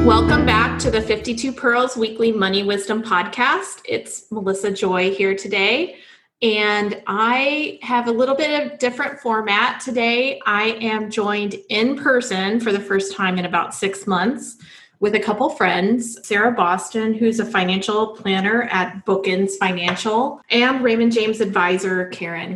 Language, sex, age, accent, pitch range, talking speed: English, female, 30-49, American, 190-225 Hz, 150 wpm